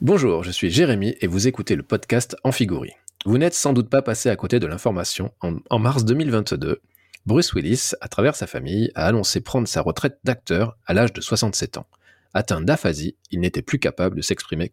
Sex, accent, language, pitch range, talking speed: male, French, French, 95-130 Hz, 200 wpm